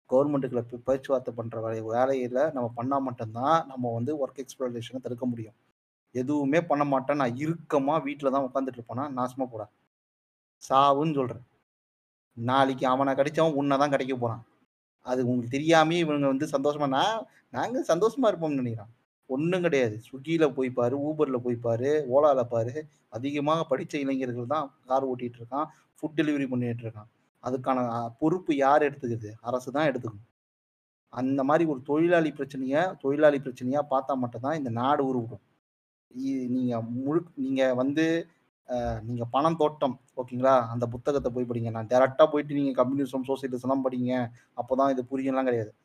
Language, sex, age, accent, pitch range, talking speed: Tamil, male, 30-49, native, 120-140 Hz, 135 wpm